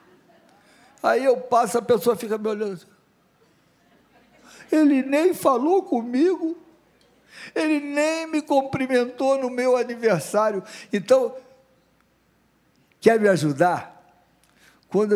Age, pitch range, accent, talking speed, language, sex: 60-79, 155-225 Hz, Brazilian, 95 wpm, Portuguese, male